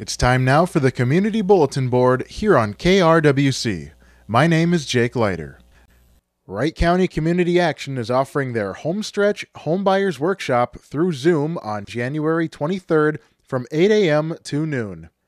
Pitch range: 120-175 Hz